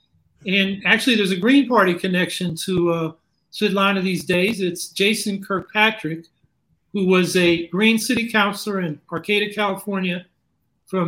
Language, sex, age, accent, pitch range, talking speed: English, male, 50-69, American, 175-215 Hz, 135 wpm